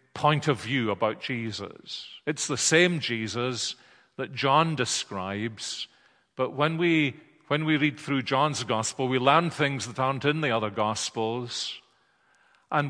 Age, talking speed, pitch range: 40-59, 150 wpm, 120-150 Hz